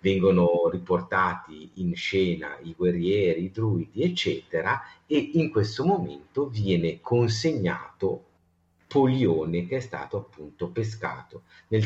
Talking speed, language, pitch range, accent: 110 wpm, Italian, 85-115 Hz, native